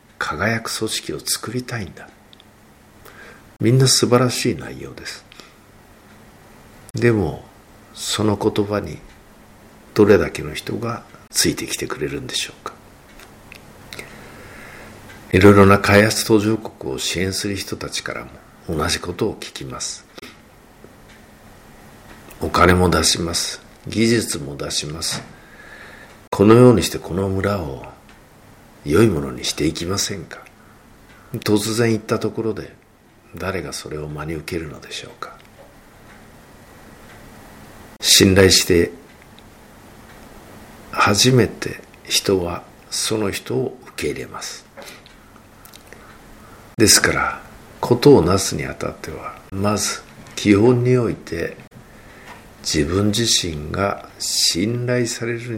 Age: 60-79